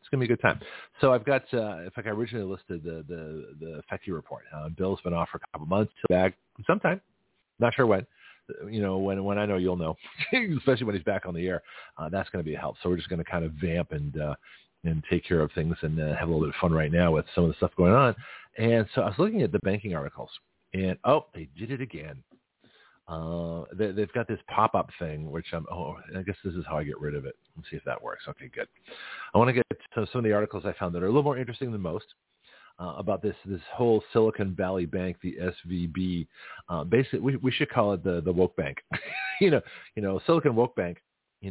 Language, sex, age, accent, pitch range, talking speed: English, male, 40-59, American, 85-115 Hz, 260 wpm